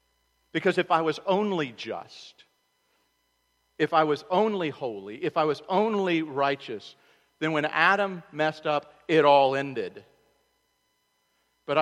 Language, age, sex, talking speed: English, 50-69, male, 125 wpm